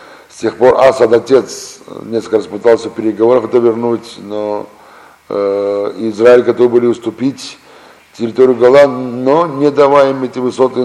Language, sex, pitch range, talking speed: Russian, male, 115-135 Hz, 140 wpm